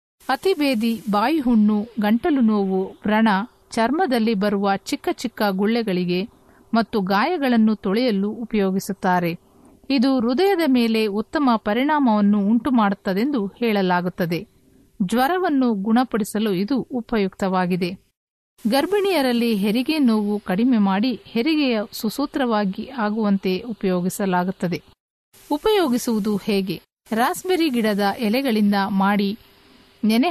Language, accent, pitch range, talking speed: Kannada, native, 200-255 Hz, 80 wpm